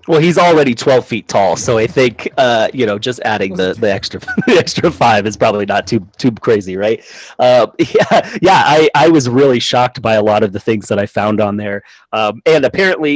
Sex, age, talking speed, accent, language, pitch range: male, 30-49, 225 wpm, American, English, 110-150 Hz